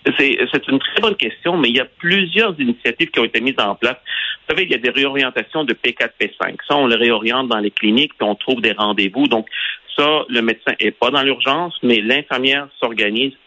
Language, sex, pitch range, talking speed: French, male, 110-140 Hz, 225 wpm